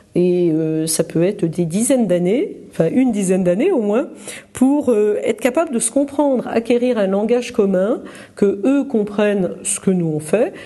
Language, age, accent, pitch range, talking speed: French, 50-69, French, 185-250 Hz, 175 wpm